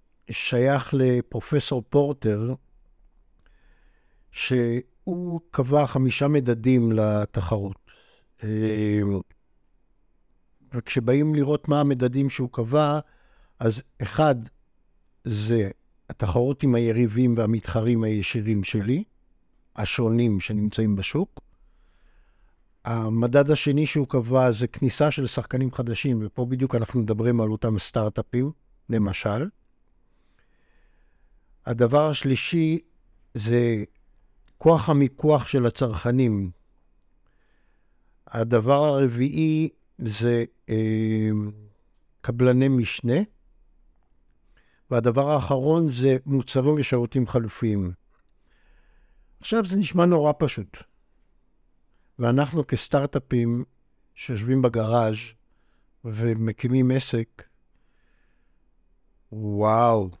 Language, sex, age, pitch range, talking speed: Hebrew, male, 60-79, 110-135 Hz, 75 wpm